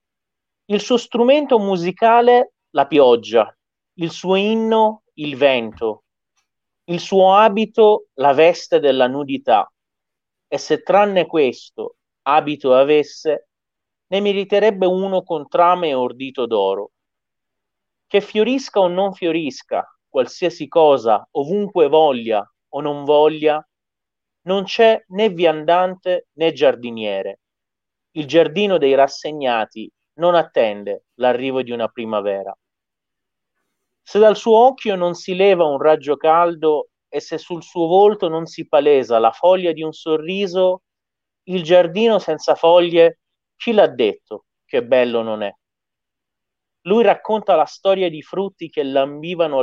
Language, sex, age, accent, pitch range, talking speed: Italian, male, 40-59, native, 140-200 Hz, 120 wpm